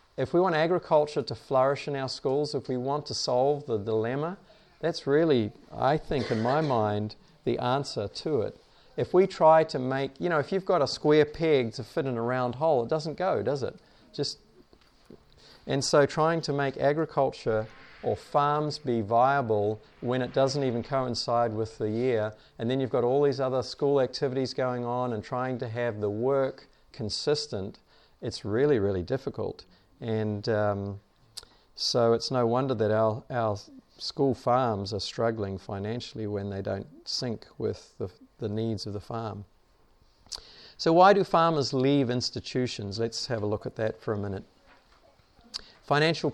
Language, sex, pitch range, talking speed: English, male, 110-140 Hz, 170 wpm